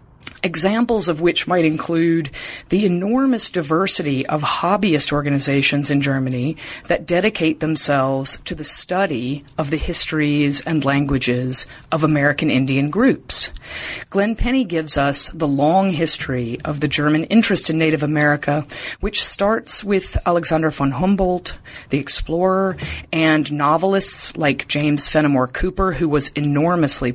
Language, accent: English, American